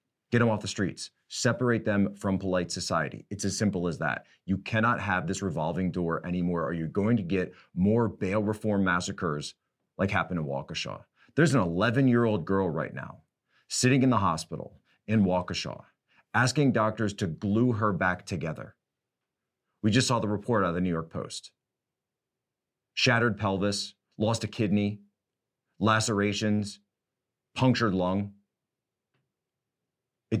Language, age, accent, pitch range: English, 30-49, American, 95-115 Hz